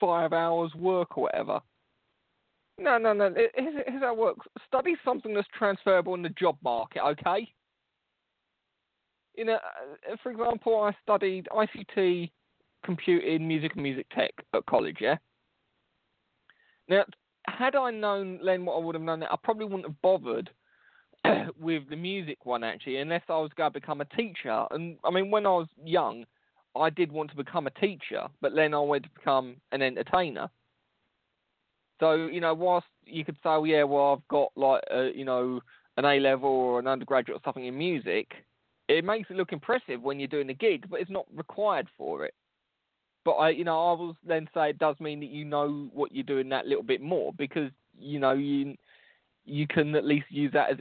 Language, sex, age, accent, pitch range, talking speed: English, male, 20-39, British, 145-195 Hz, 190 wpm